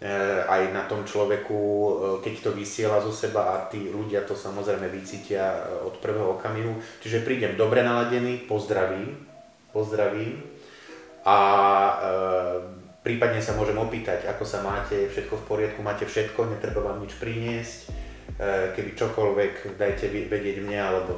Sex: male